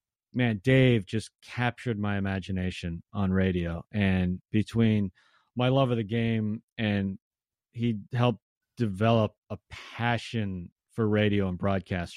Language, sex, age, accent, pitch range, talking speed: English, male, 40-59, American, 105-145 Hz, 125 wpm